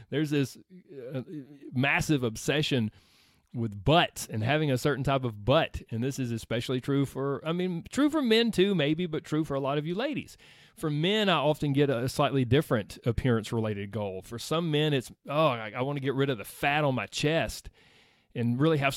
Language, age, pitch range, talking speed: English, 30-49, 125-165 Hz, 205 wpm